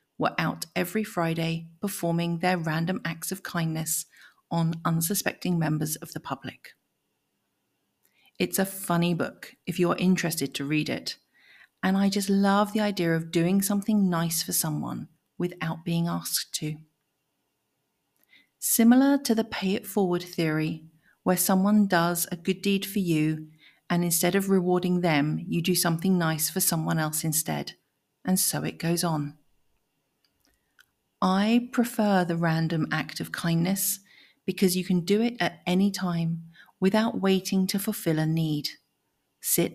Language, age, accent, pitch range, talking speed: English, 40-59, British, 165-195 Hz, 145 wpm